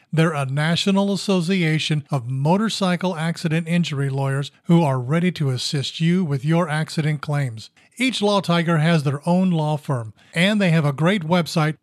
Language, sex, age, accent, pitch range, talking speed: English, male, 50-69, American, 150-180 Hz, 165 wpm